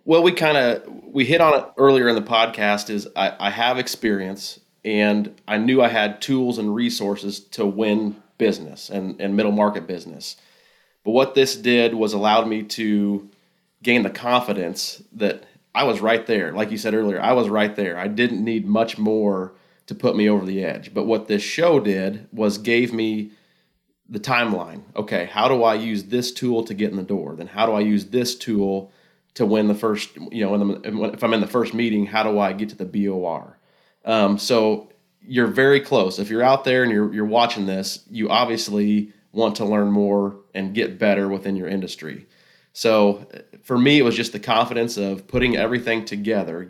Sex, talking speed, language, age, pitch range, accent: male, 200 wpm, English, 30-49, 100-115 Hz, American